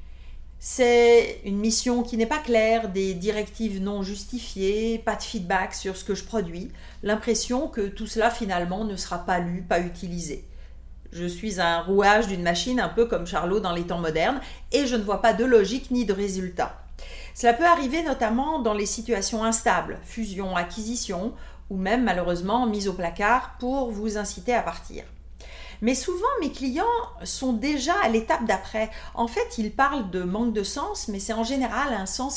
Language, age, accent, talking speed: French, 40-59, French, 180 wpm